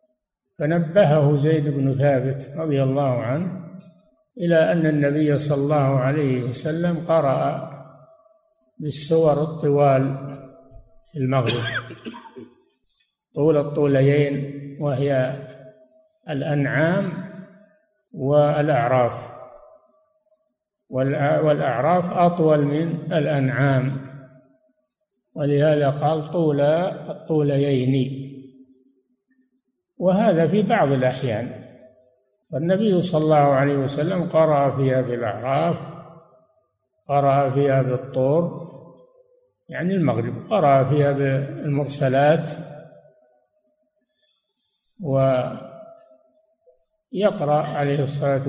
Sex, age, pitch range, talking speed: male, 60-79, 135-175 Hz, 65 wpm